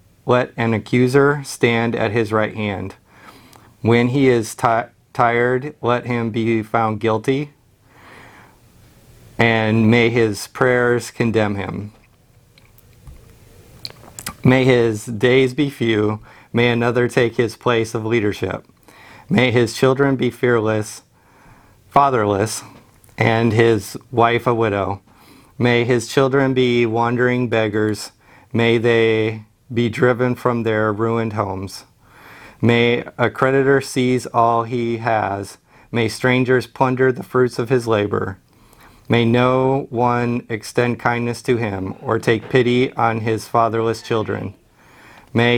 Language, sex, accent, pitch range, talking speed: English, male, American, 110-125 Hz, 120 wpm